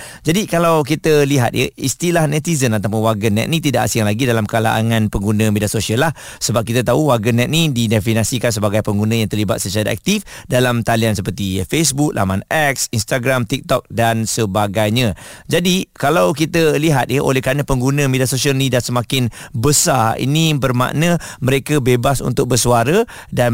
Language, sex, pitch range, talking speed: Malay, male, 115-145 Hz, 155 wpm